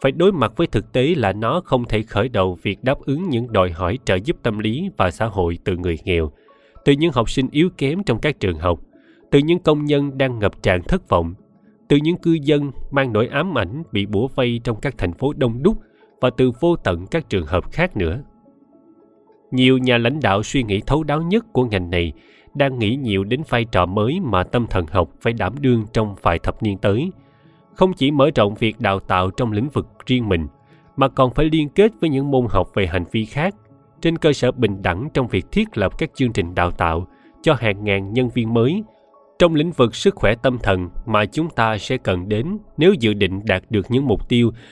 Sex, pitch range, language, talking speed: male, 100-145 Hz, Vietnamese, 230 wpm